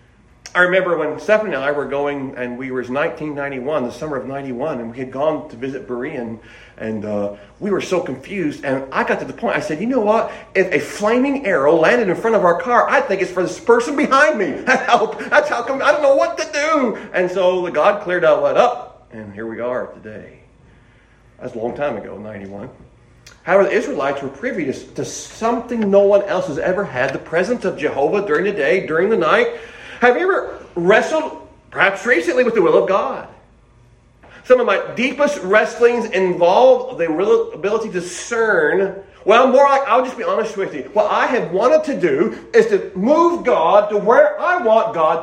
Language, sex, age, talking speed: English, male, 40-59, 205 wpm